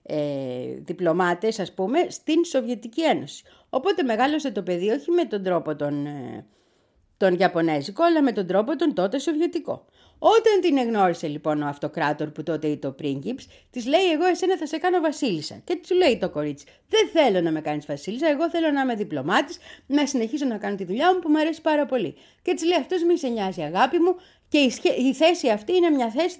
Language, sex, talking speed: Greek, female, 200 wpm